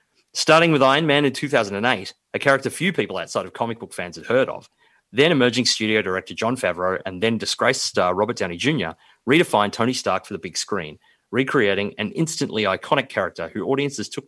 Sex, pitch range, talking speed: male, 100-135 Hz, 195 wpm